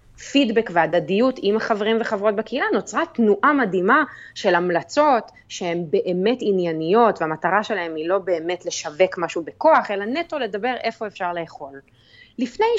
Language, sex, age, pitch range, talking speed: Hebrew, female, 30-49, 180-260 Hz, 135 wpm